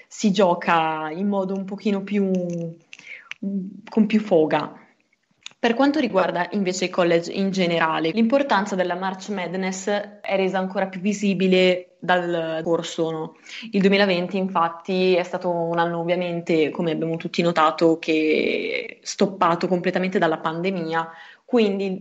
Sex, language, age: female, Italian, 20-39